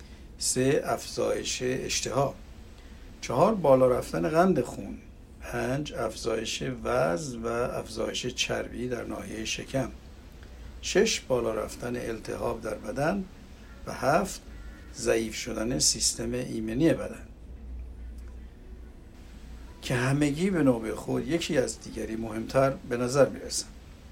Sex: male